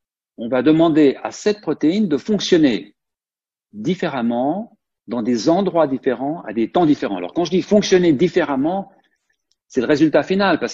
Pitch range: 120-190 Hz